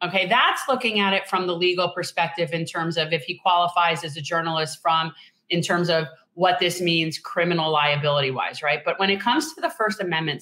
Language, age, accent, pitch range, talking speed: English, 30-49, American, 175-225 Hz, 215 wpm